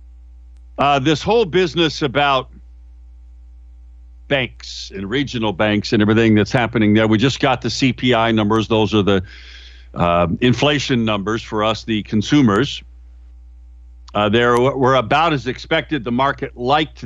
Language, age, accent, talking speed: English, 50-69, American, 135 wpm